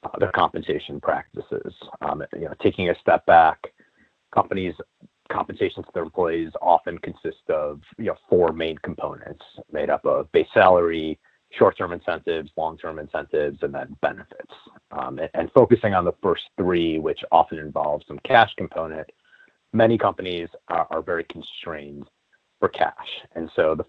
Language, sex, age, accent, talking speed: English, male, 30-49, American, 155 wpm